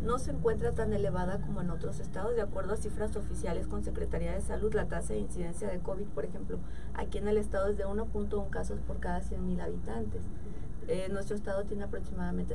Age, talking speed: 30-49, 205 wpm